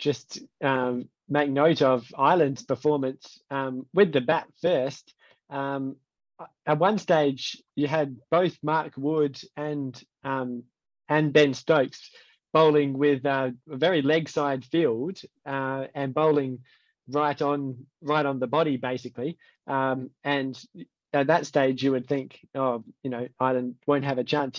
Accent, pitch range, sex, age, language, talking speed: Australian, 130-155 Hz, male, 20-39, English, 145 wpm